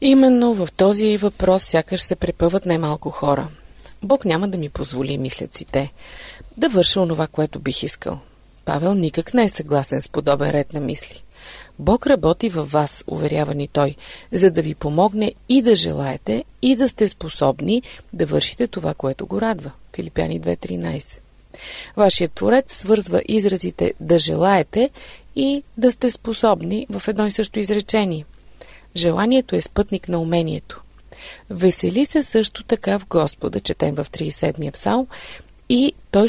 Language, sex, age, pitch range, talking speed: Bulgarian, female, 30-49, 155-220 Hz, 145 wpm